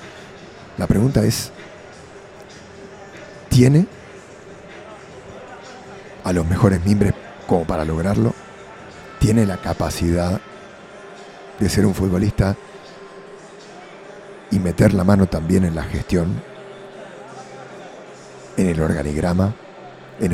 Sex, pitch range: male, 85-110 Hz